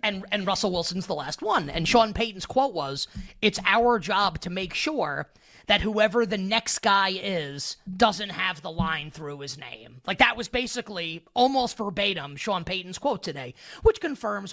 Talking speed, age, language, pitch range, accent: 180 wpm, 30-49, English, 170-225 Hz, American